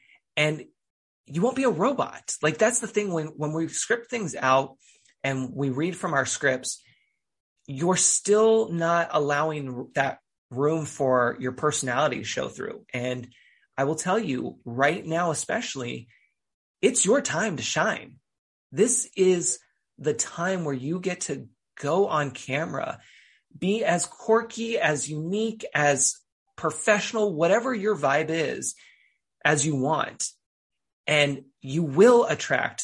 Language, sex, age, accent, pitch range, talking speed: English, male, 30-49, American, 135-190 Hz, 140 wpm